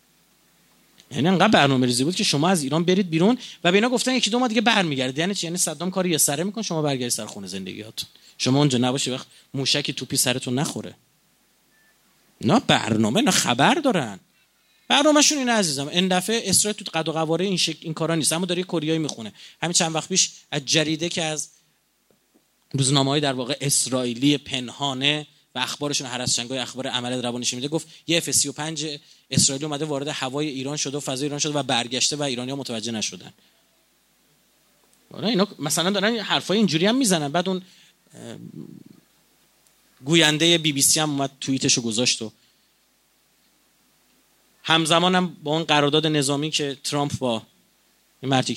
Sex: male